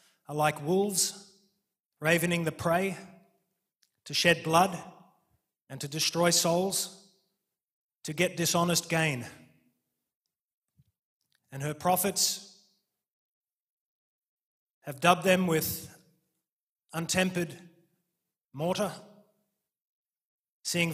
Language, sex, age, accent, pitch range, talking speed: English, male, 30-49, Australian, 165-190 Hz, 75 wpm